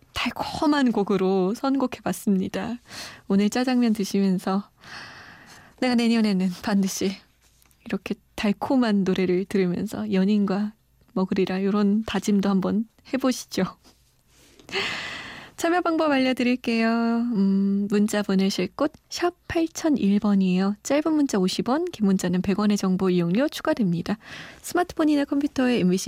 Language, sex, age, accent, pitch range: Korean, female, 20-39, native, 195-255 Hz